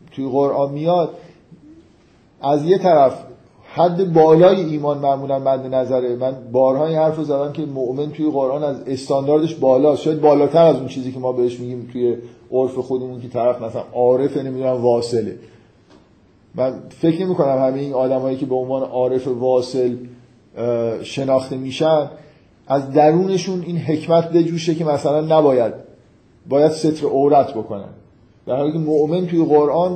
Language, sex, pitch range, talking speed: Persian, male, 130-160 Hz, 145 wpm